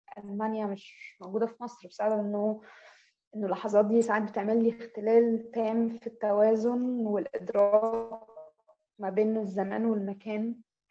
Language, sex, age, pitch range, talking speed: English, female, 20-39, 215-255 Hz, 120 wpm